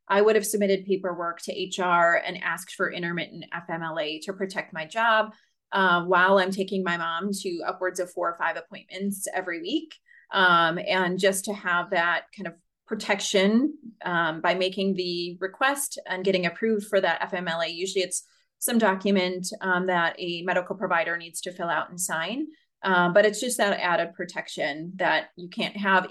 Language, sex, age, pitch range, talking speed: English, female, 30-49, 175-210 Hz, 175 wpm